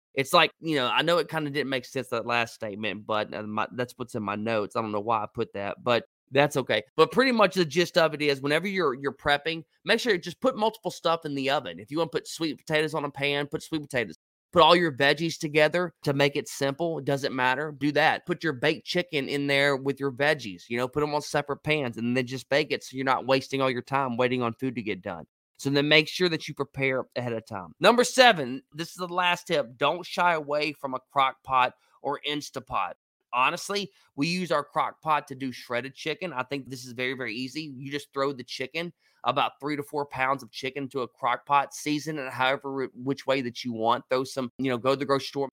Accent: American